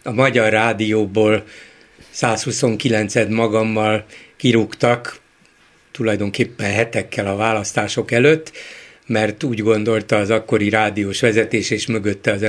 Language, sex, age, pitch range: Hungarian, male, 60-79, 110-145 Hz